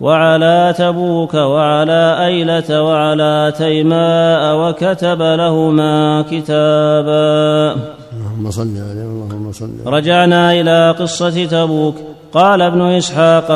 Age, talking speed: 30-49, 90 wpm